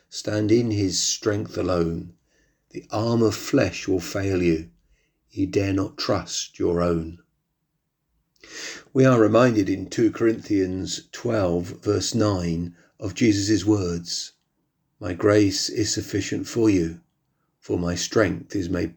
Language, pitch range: English, 90-130 Hz